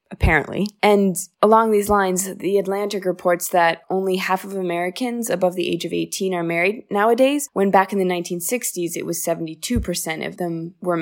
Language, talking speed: English, 175 wpm